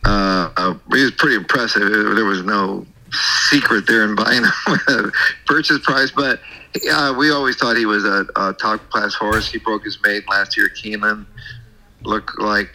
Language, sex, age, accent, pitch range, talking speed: English, male, 50-69, American, 105-115 Hz, 175 wpm